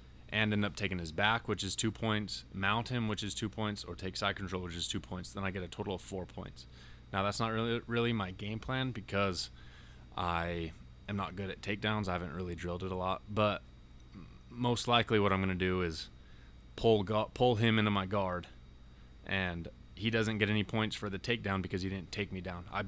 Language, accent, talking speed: English, American, 225 wpm